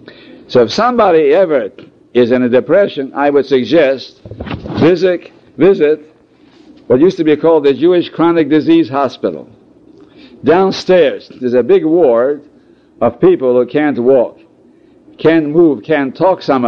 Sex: male